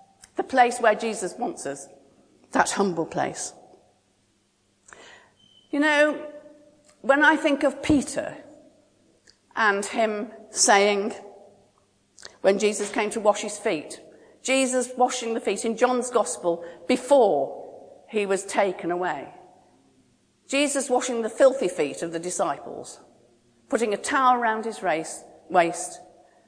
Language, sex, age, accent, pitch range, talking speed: English, female, 50-69, British, 210-290 Hz, 120 wpm